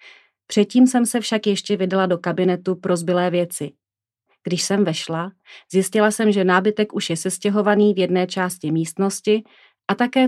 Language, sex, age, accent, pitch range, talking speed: Czech, female, 30-49, native, 170-210 Hz, 160 wpm